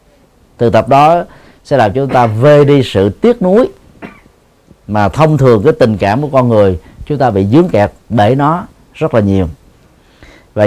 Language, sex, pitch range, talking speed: Vietnamese, male, 105-145 Hz, 185 wpm